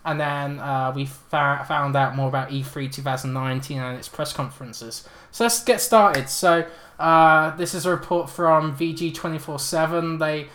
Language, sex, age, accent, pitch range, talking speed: English, male, 20-39, British, 140-165 Hz, 155 wpm